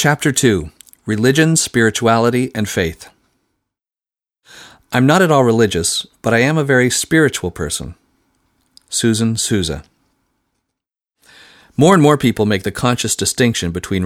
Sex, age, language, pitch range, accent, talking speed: male, 40-59, English, 95-125 Hz, American, 125 wpm